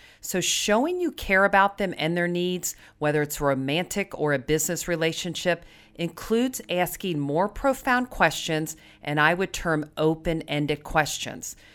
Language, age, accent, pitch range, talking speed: English, 40-59, American, 150-190 Hz, 145 wpm